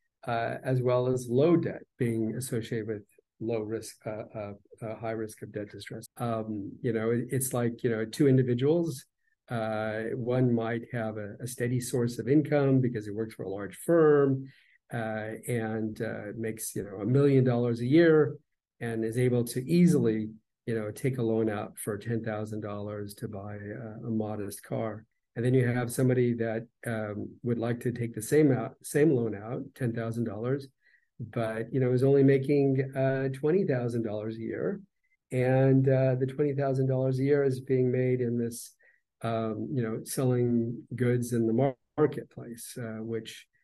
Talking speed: 170 wpm